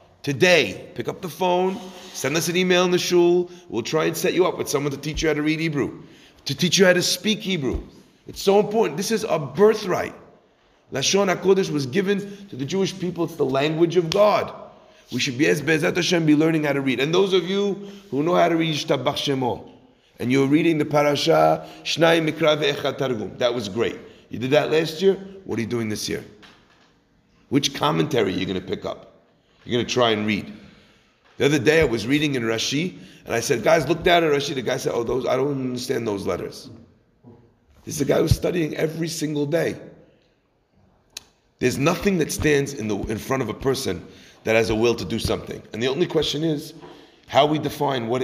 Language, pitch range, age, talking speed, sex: English, 135-180 Hz, 40-59, 215 wpm, male